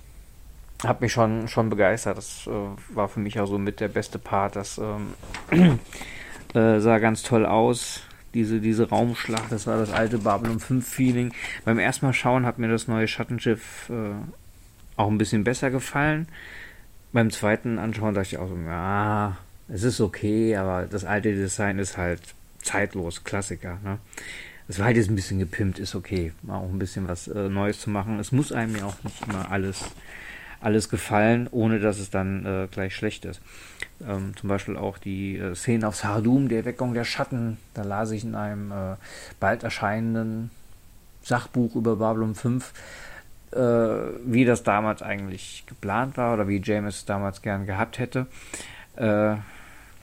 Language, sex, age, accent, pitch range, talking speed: German, male, 40-59, German, 95-115 Hz, 170 wpm